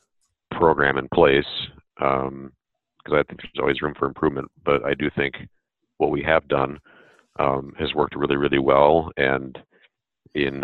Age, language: 40-59, English